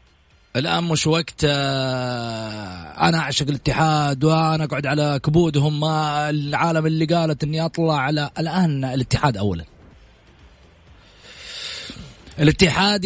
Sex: male